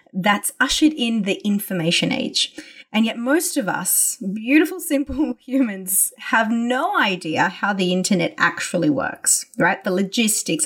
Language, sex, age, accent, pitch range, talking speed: English, female, 20-39, Australian, 190-260 Hz, 140 wpm